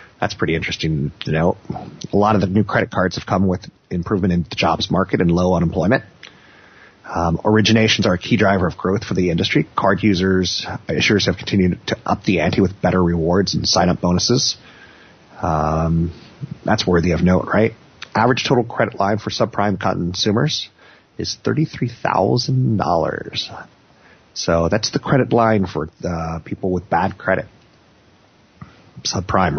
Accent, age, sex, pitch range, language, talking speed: American, 30-49, male, 90-115 Hz, English, 160 wpm